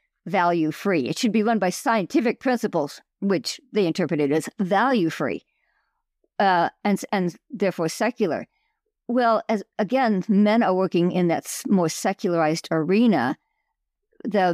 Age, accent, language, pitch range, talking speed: 50-69, American, English, 175-230 Hz, 130 wpm